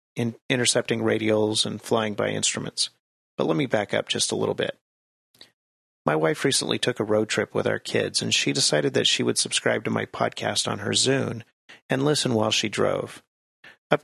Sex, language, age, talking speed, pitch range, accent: male, English, 40-59, 190 wpm, 105-130 Hz, American